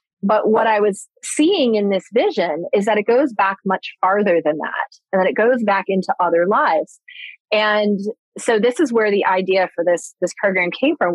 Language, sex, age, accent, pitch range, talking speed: English, female, 30-49, American, 180-220 Hz, 205 wpm